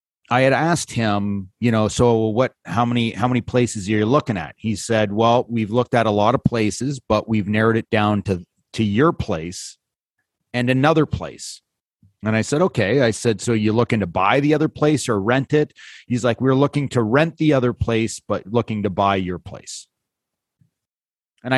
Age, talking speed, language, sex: 30-49, 200 wpm, English, male